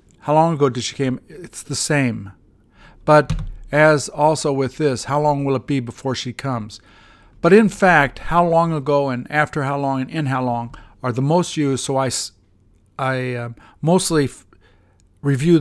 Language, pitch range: English, 110-155 Hz